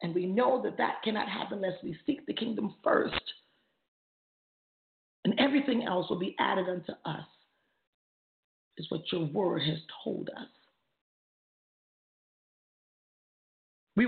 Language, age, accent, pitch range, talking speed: English, 40-59, American, 170-245 Hz, 125 wpm